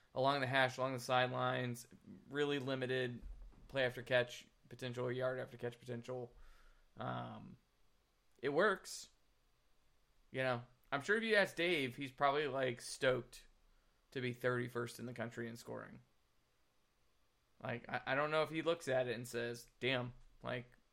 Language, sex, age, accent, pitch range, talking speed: English, male, 20-39, American, 120-140 Hz, 150 wpm